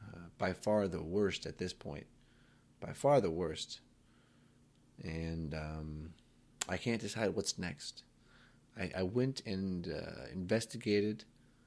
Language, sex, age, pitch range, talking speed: English, male, 30-49, 90-105 Hz, 130 wpm